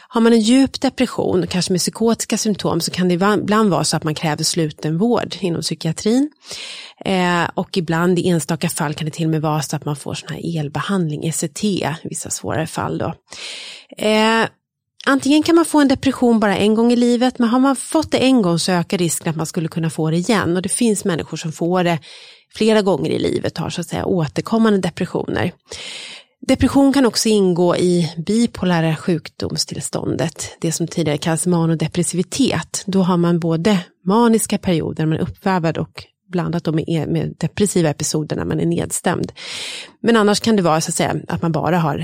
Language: English